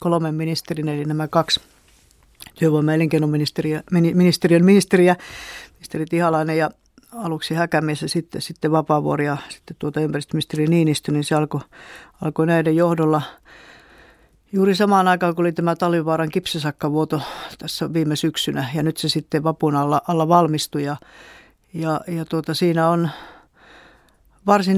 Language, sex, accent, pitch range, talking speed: Finnish, female, native, 155-170 Hz, 135 wpm